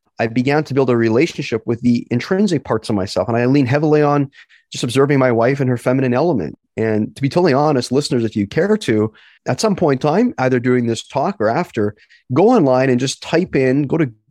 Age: 30-49